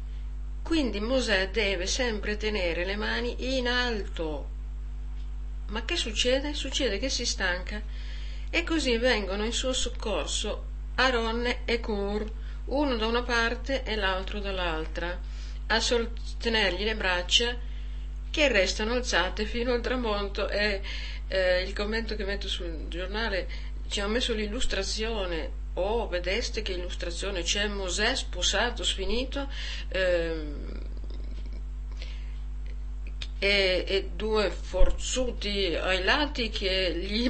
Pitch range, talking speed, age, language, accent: 175-245 Hz, 115 wpm, 50-69, Italian, native